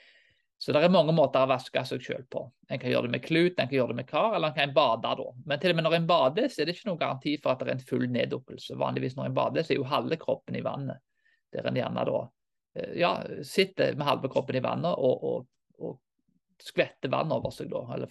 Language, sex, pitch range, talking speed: Danish, male, 130-195 Hz, 235 wpm